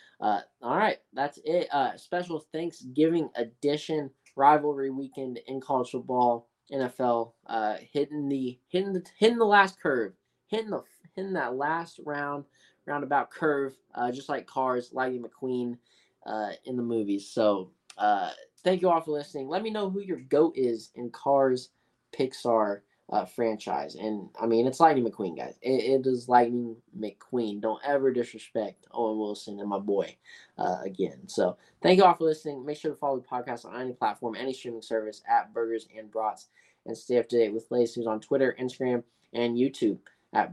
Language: English